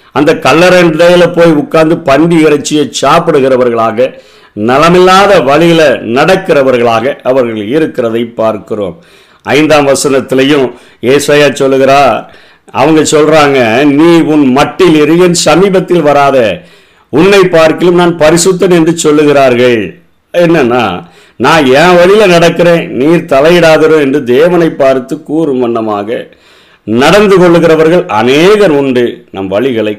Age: 50-69